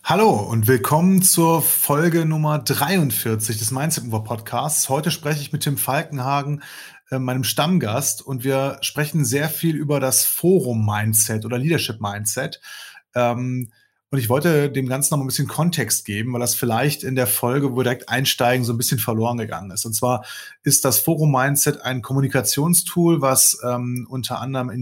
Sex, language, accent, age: male, German, German, 30-49